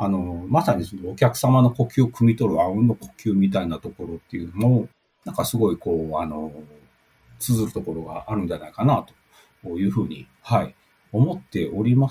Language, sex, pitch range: Japanese, male, 95-130 Hz